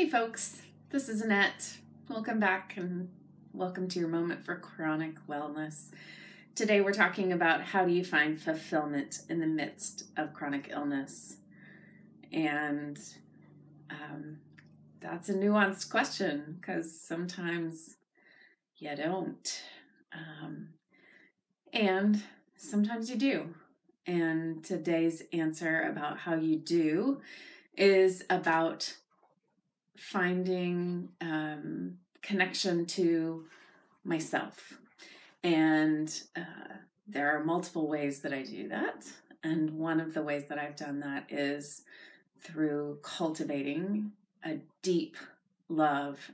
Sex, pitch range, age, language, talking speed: female, 150-190 Hz, 30-49, English, 110 wpm